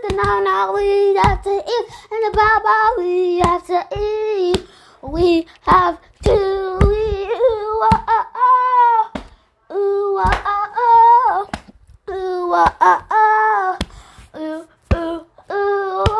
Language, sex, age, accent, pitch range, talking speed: English, female, 20-39, American, 355-435 Hz, 75 wpm